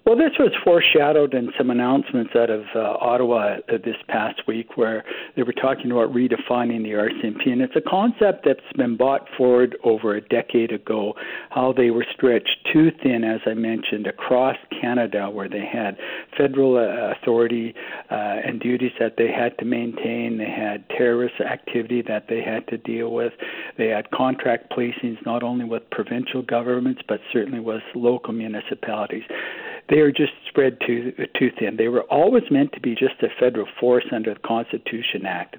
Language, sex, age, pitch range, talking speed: English, male, 60-79, 115-140 Hz, 175 wpm